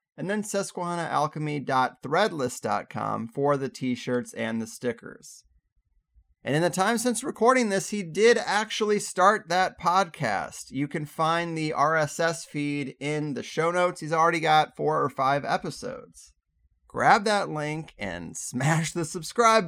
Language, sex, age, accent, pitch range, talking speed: English, male, 30-49, American, 125-175 Hz, 140 wpm